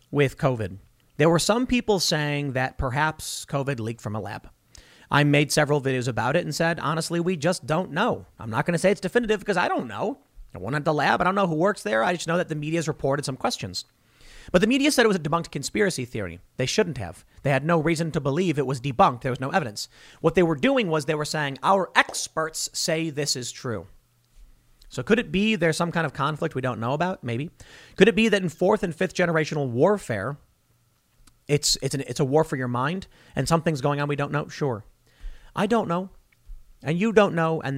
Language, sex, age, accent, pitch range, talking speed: English, male, 40-59, American, 130-175 Hz, 235 wpm